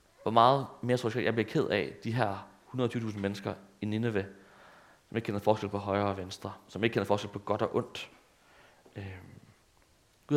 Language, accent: Danish, native